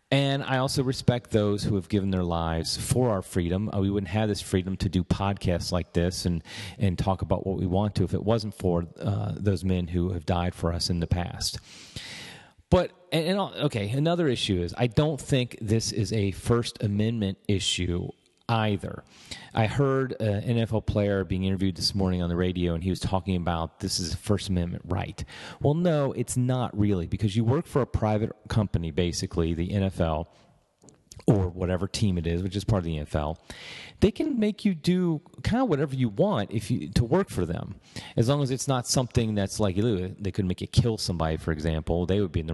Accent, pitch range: American, 95-120 Hz